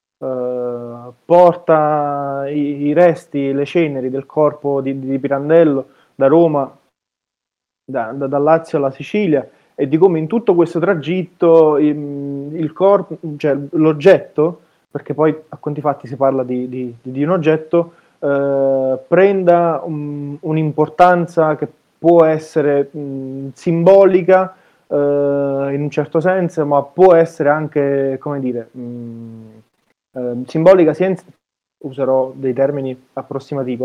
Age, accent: 20-39, native